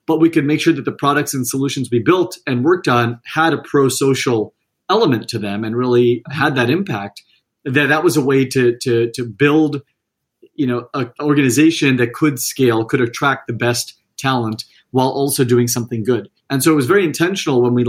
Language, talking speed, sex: English, 200 wpm, male